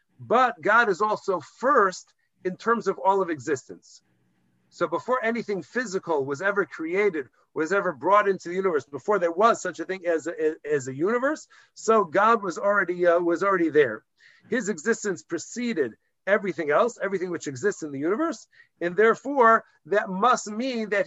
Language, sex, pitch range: English, male, 170-215 Hz